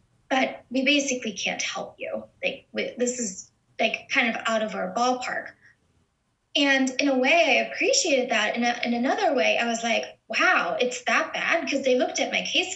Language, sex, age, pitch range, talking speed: English, female, 10-29, 235-315 Hz, 195 wpm